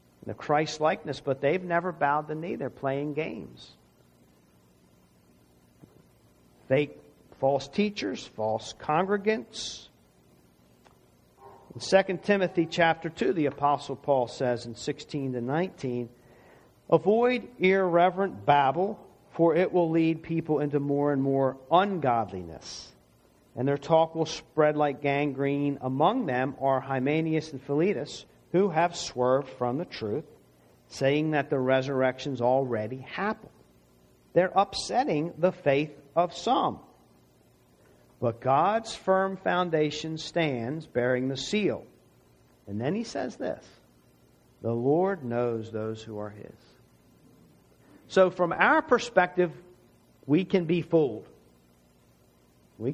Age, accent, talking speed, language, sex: 50-69, American, 115 wpm, English, male